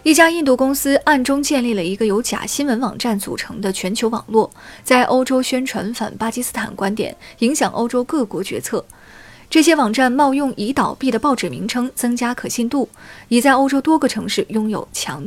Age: 20-39